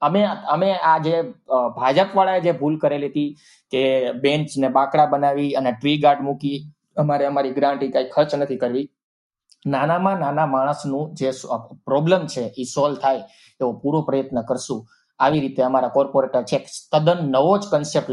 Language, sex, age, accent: Gujarati, male, 20-39, native